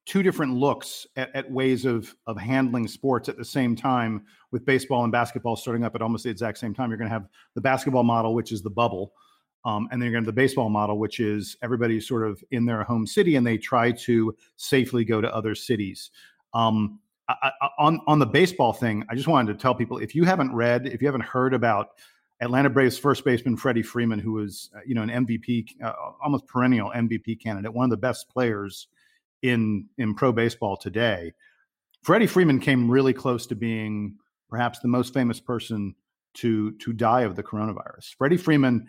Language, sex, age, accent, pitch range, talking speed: English, male, 40-59, American, 110-135 Hz, 200 wpm